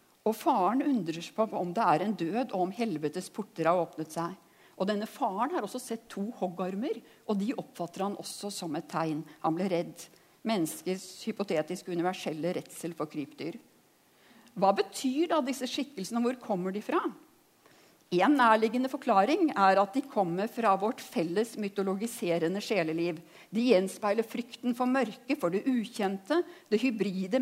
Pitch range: 175-250 Hz